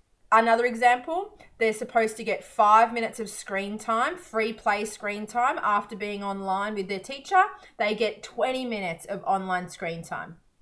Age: 20-39